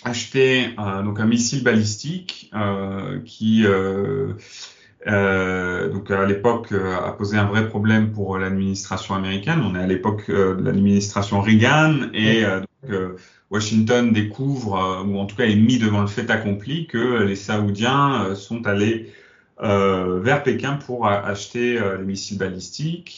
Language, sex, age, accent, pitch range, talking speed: French, male, 30-49, French, 100-120 Hz, 160 wpm